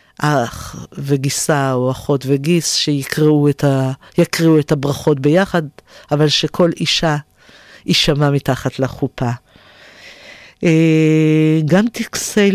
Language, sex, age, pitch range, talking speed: Hebrew, female, 50-69, 140-155 Hz, 90 wpm